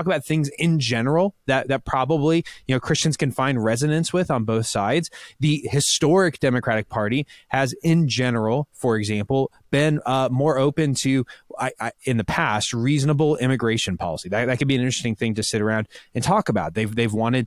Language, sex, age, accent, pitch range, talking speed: English, male, 20-39, American, 115-155 Hz, 190 wpm